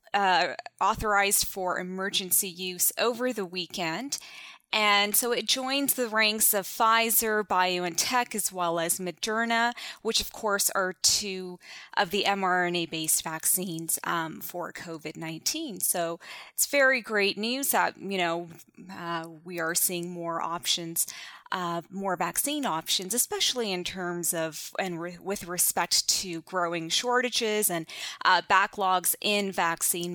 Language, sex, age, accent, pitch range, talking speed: English, female, 20-39, American, 170-225 Hz, 130 wpm